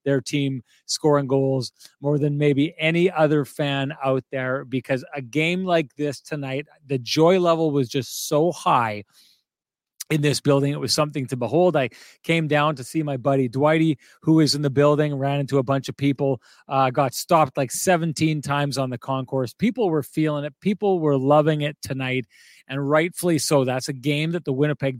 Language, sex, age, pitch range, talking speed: English, male, 30-49, 130-150 Hz, 190 wpm